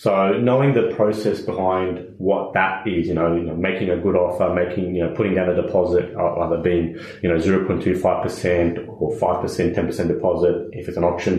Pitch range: 90-115 Hz